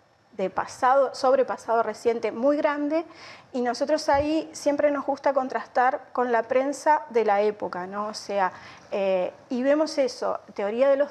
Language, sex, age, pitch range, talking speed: Spanish, female, 30-49, 210-285 Hz, 160 wpm